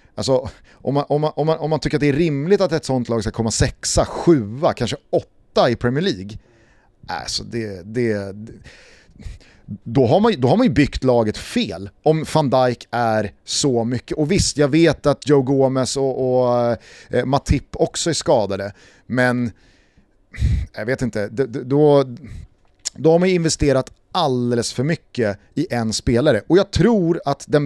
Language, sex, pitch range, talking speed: Swedish, male, 115-155 Hz, 175 wpm